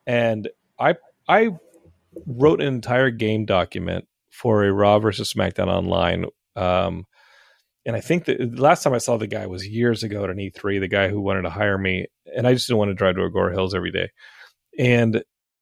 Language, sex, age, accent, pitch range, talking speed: English, male, 30-49, American, 100-130 Hz, 195 wpm